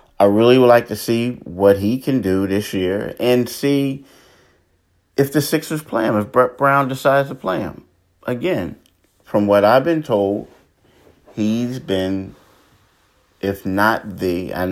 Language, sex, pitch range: English, male, 85-105 Hz